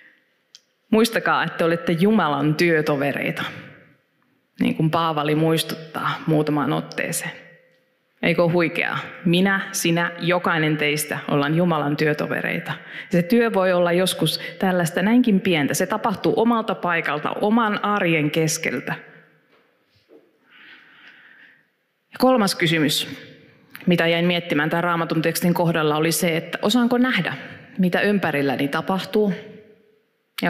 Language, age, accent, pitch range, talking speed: Finnish, 20-39, native, 155-205 Hz, 110 wpm